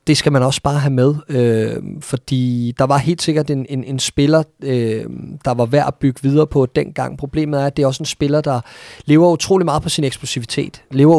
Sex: male